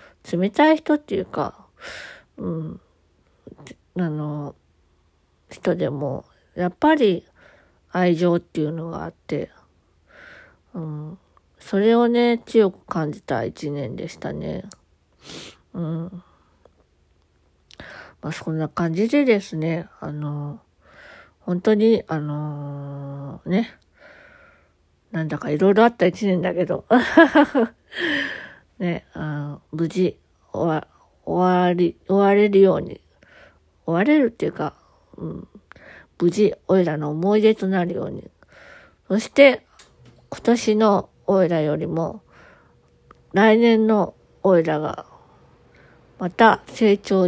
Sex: female